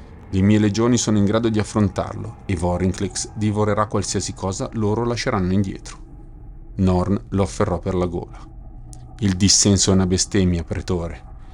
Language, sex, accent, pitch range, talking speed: Italian, male, native, 90-105 Hz, 145 wpm